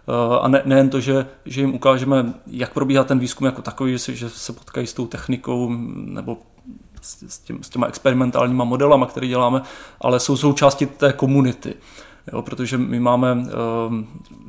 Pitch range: 125-135 Hz